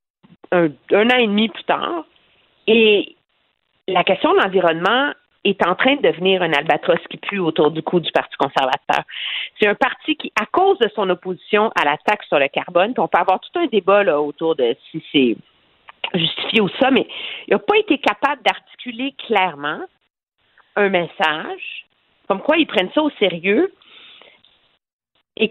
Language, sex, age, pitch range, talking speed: French, female, 50-69, 180-275 Hz, 170 wpm